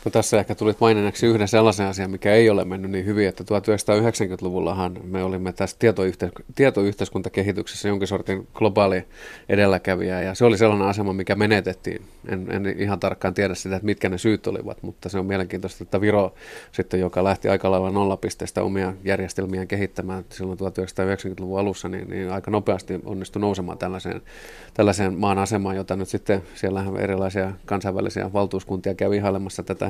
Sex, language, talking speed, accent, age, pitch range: male, Finnish, 160 wpm, native, 30-49, 95-105 Hz